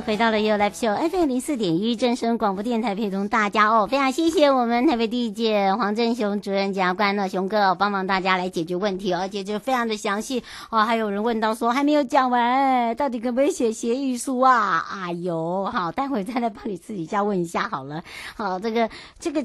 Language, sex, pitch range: Chinese, male, 180-240 Hz